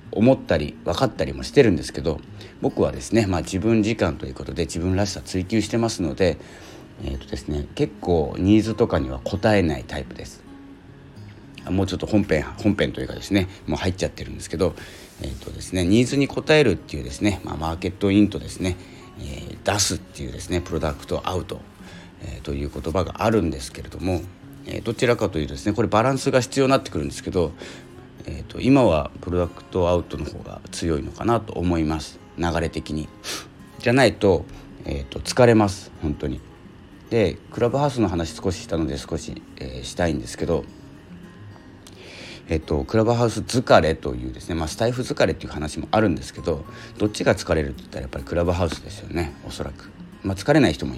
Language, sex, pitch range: Japanese, male, 80-105 Hz